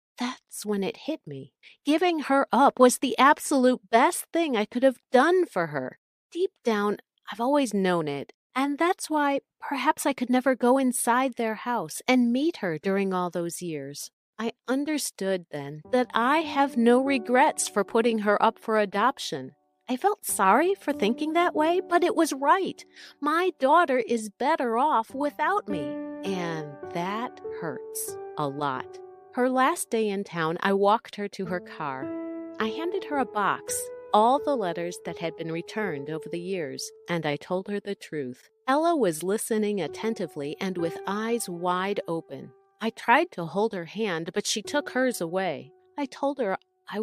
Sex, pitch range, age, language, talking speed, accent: female, 195-290 Hz, 40-59, English, 175 wpm, American